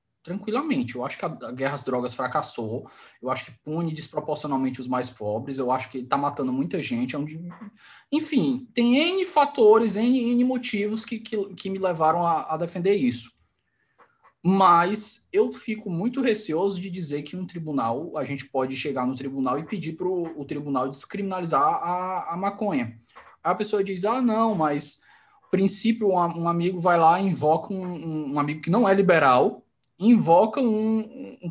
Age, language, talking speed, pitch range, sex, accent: 20-39, Portuguese, 170 wpm, 150-225 Hz, male, Brazilian